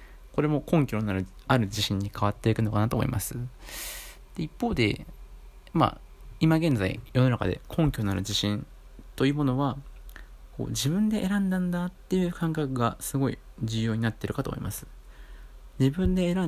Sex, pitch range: male, 105-145 Hz